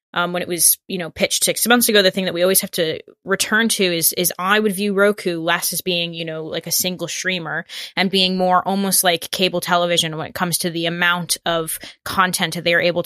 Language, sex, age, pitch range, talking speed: English, female, 10-29, 170-185 Hz, 245 wpm